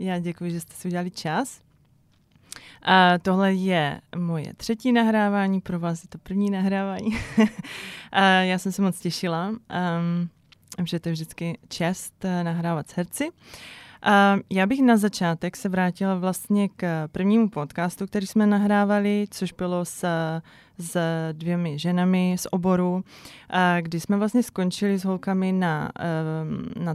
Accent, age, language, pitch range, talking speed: native, 20-39, Czech, 170-195 Hz, 145 wpm